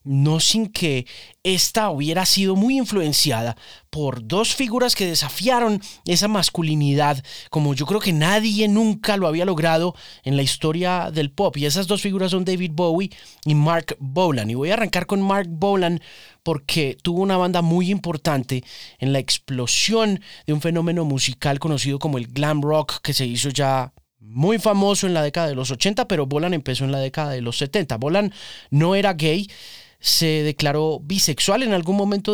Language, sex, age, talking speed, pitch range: Spanish, male, 30-49, 175 wpm, 140-190 Hz